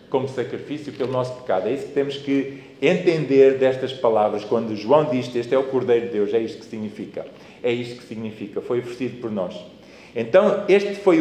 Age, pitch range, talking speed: 40-59, 135-205 Hz, 200 wpm